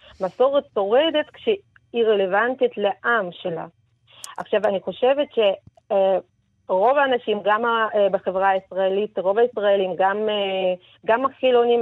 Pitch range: 195-245 Hz